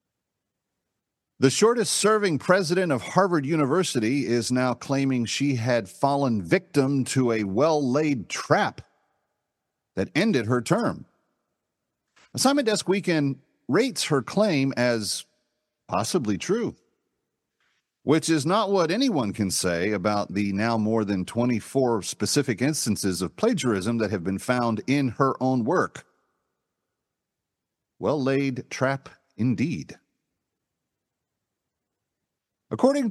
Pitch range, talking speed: 110-155 Hz, 105 wpm